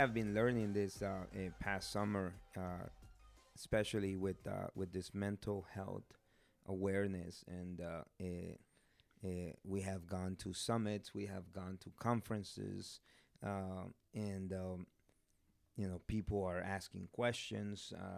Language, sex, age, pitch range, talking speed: English, male, 30-49, 95-105 Hz, 130 wpm